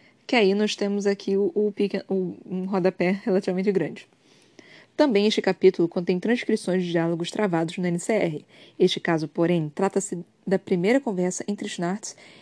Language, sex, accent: Portuguese, female, Brazilian